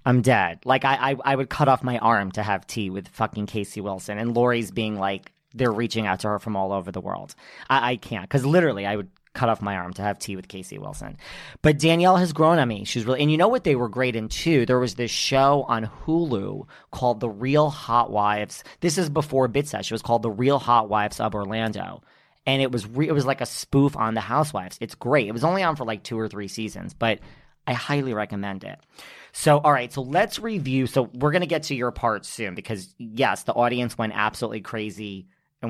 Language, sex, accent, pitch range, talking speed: English, male, American, 110-140 Hz, 240 wpm